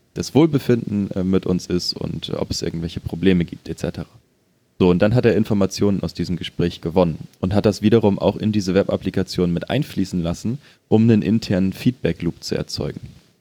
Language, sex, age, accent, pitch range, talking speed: German, male, 30-49, German, 85-100 Hz, 175 wpm